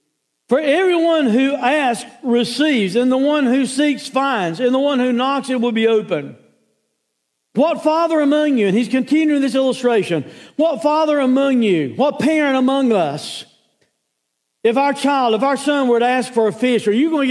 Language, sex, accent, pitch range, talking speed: English, male, American, 230-295 Hz, 185 wpm